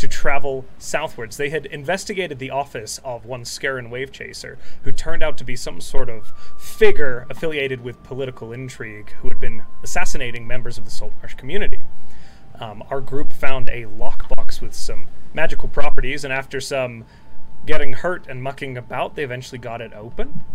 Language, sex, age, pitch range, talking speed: English, male, 30-49, 120-150 Hz, 170 wpm